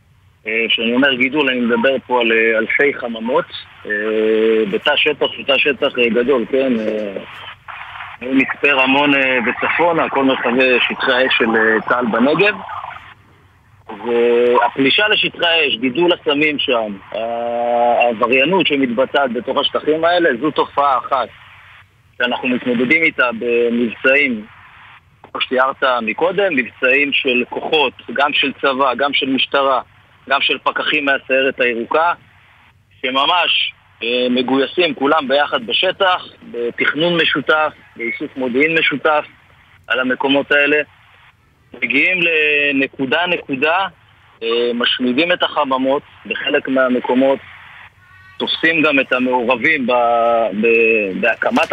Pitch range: 115-145 Hz